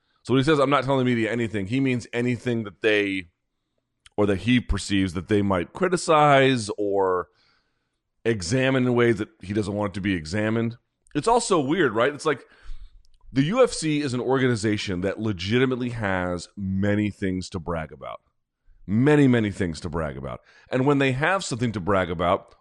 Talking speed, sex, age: 185 wpm, male, 30-49